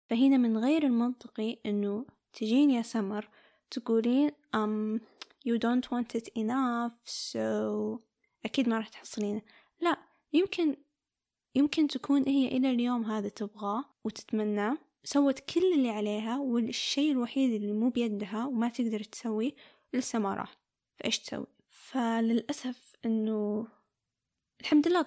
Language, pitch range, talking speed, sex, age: Arabic, 220-255 Hz, 120 wpm, female, 10-29